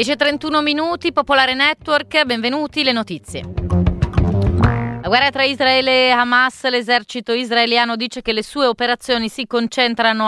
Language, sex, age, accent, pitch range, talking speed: Italian, female, 30-49, native, 195-240 Hz, 130 wpm